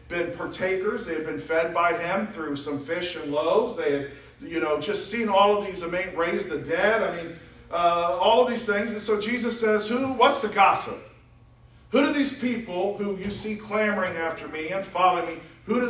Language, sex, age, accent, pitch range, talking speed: English, male, 50-69, American, 170-225 Hz, 210 wpm